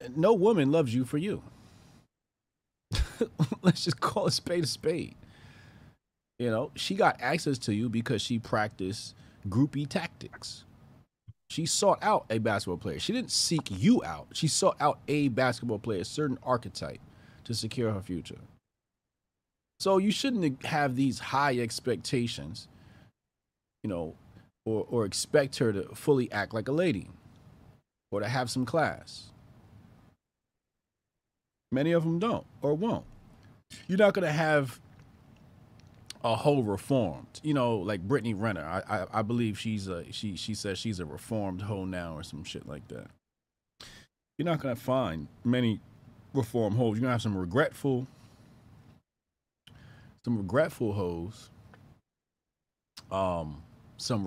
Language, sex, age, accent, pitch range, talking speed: English, male, 30-49, American, 100-135 Hz, 140 wpm